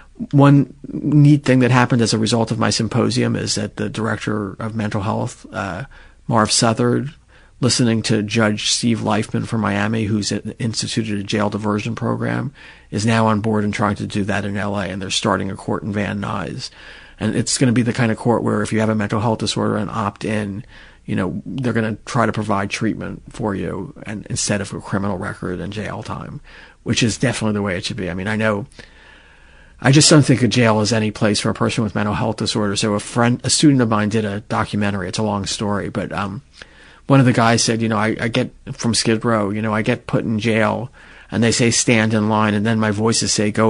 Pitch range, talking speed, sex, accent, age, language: 105-115 Hz, 235 wpm, male, American, 40-59, English